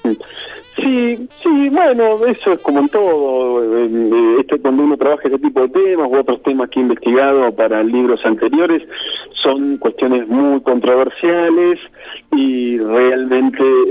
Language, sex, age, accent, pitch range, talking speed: Spanish, male, 40-59, Argentinian, 110-165 Hz, 140 wpm